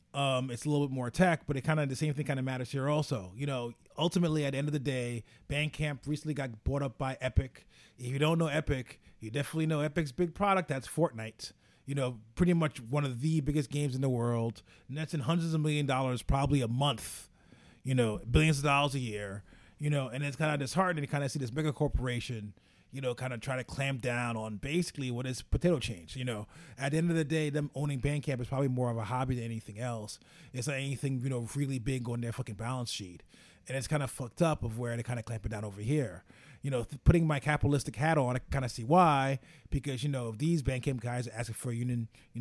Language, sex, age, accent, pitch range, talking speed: English, male, 30-49, American, 120-150 Hz, 255 wpm